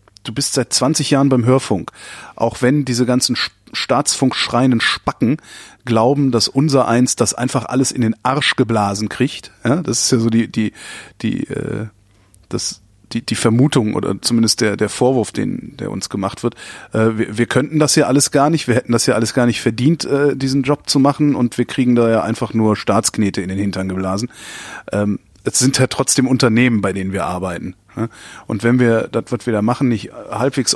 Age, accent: 30-49, German